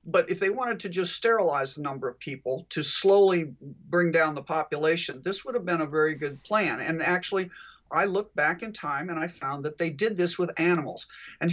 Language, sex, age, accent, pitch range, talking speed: English, male, 50-69, American, 155-195 Hz, 220 wpm